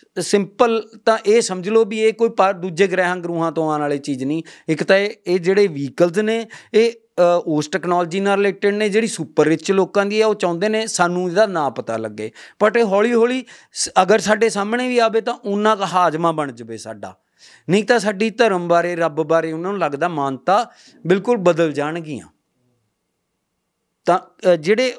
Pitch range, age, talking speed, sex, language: 165-220 Hz, 50-69, 180 wpm, male, Punjabi